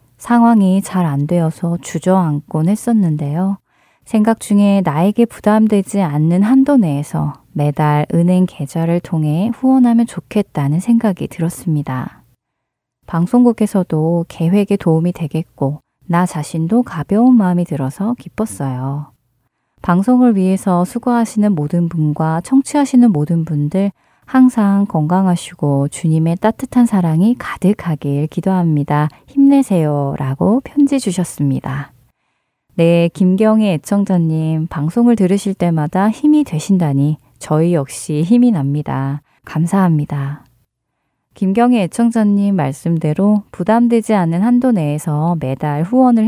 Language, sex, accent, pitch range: Korean, female, native, 150-210 Hz